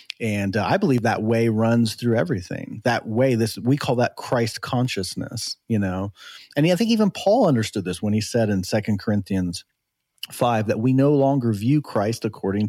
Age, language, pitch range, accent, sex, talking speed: 40-59, English, 100-120 Hz, American, male, 190 wpm